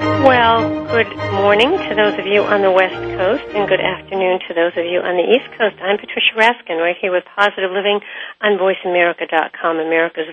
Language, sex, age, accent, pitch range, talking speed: English, female, 50-69, American, 175-205 Hz, 190 wpm